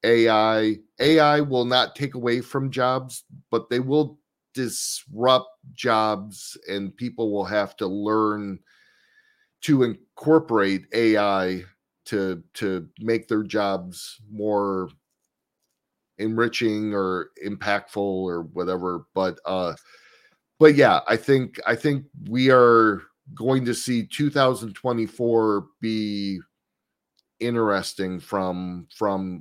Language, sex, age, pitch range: English, male, 40-59, 95-125 Hz